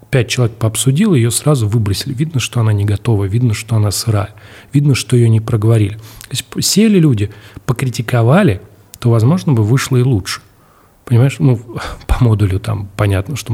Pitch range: 105-130 Hz